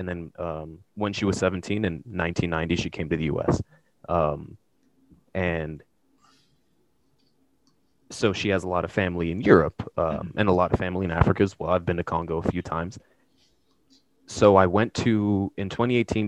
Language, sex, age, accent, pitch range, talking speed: English, male, 20-39, American, 85-100 Hz, 175 wpm